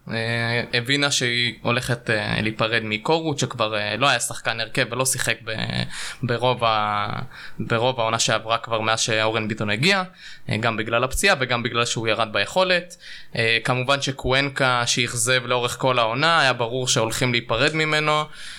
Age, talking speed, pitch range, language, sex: 20-39, 135 wpm, 120-150 Hz, Hebrew, male